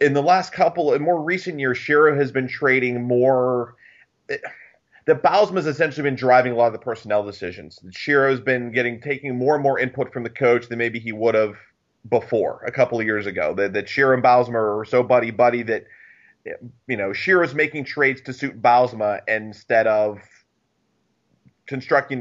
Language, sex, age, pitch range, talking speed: English, male, 30-49, 115-155 Hz, 190 wpm